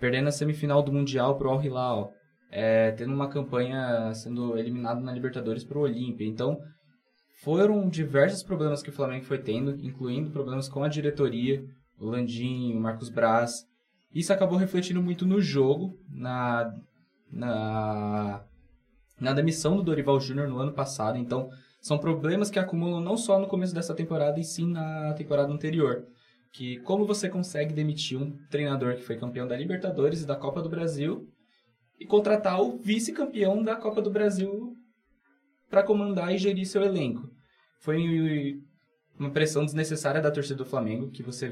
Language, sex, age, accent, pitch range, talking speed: Portuguese, male, 10-29, Brazilian, 125-170 Hz, 160 wpm